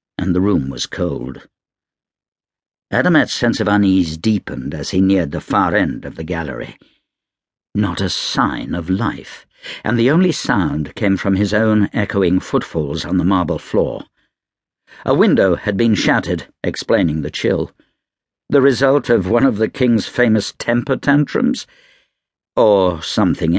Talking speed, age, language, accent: 150 wpm, 60-79, English, British